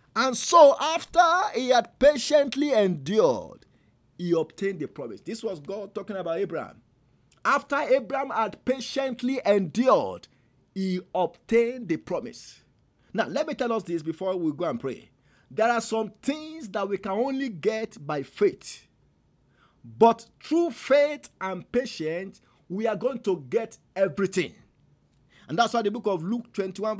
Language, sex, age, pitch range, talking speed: English, male, 50-69, 180-260 Hz, 150 wpm